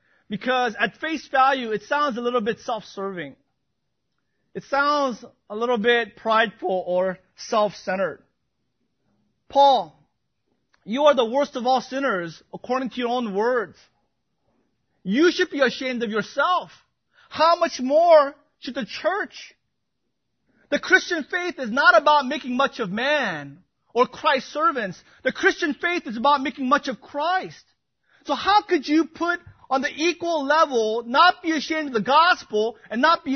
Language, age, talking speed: English, 30-49, 150 wpm